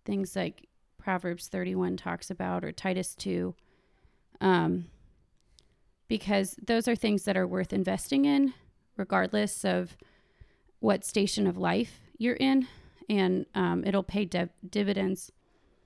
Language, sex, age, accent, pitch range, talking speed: English, female, 30-49, American, 180-210 Hz, 120 wpm